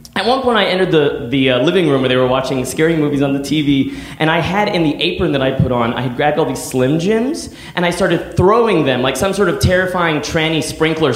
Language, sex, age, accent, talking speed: English, male, 20-39, American, 260 wpm